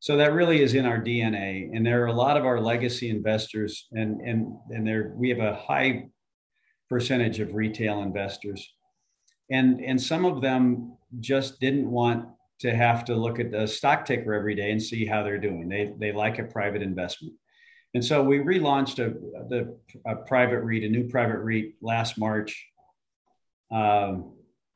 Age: 40-59